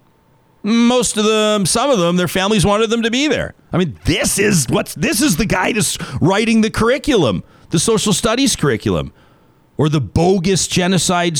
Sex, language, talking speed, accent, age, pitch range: male, English, 180 wpm, American, 40-59, 120-180 Hz